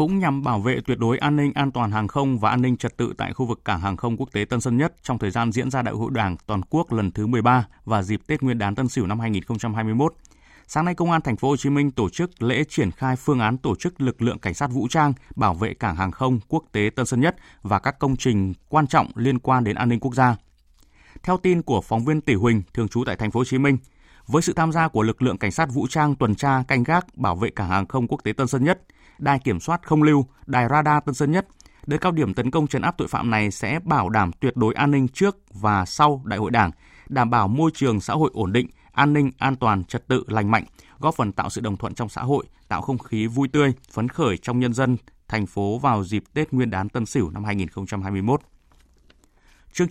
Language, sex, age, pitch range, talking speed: Vietnamese, male, 20-39, 110-145 Hz, 260 wpm